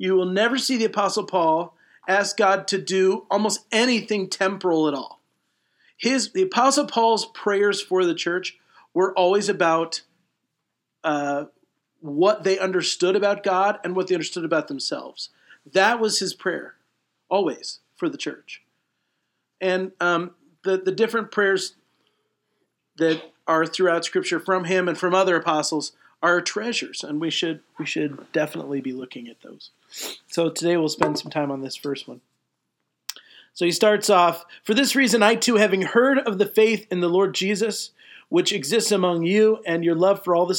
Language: English